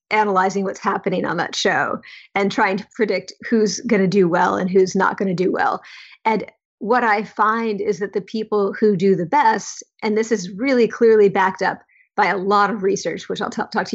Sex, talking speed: female, 215 wpm